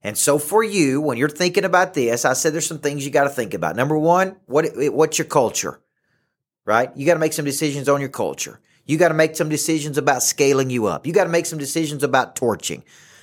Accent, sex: American, male